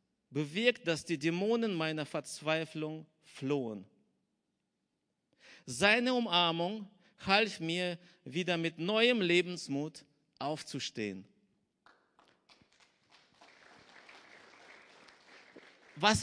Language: German